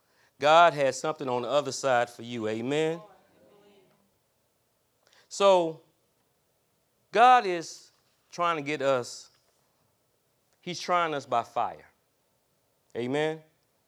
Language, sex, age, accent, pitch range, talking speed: English, male, 30-49, American, 120-165 Hz, 100 wpm